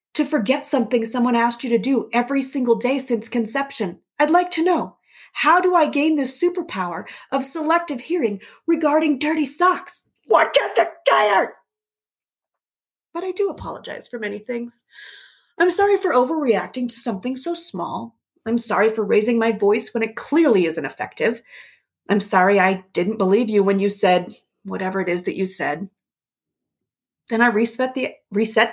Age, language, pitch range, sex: 30-49, English, 215-295 Hz, female